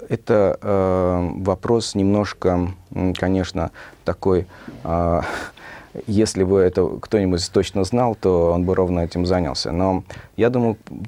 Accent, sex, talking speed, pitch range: native, male, 115 wpm, 85-100 Hz